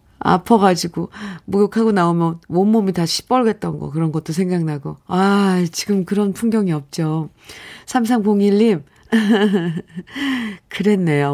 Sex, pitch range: female, 155-225 Hz